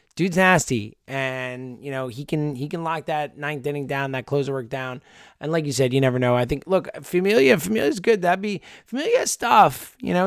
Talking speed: 215 wpm